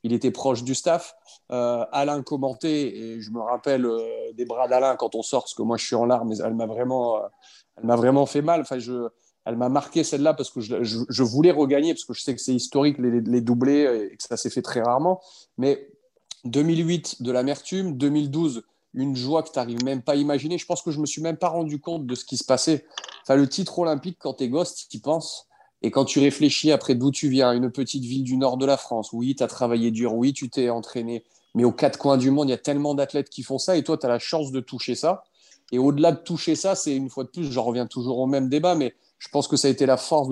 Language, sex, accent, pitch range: French, male, French, 125-150 Hz